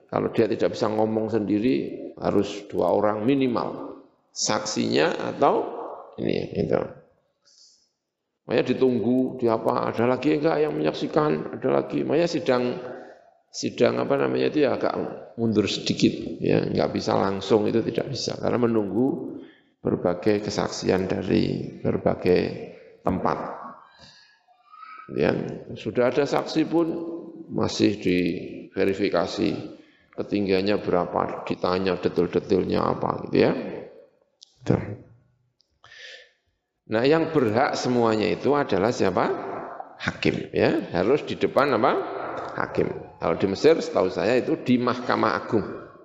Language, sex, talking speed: Indonesian, male, 110 wpm